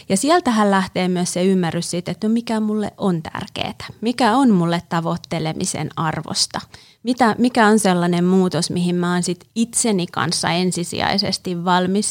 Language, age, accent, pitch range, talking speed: Finnish, 30-49, native, 170-205 Hz, 155 wpm